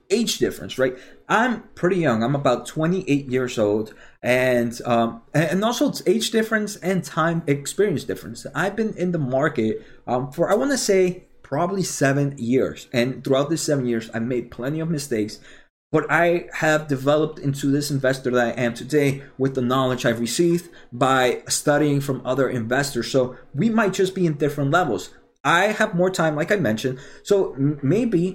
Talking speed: 180 wpm